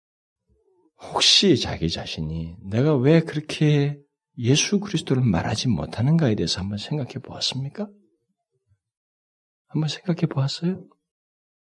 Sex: male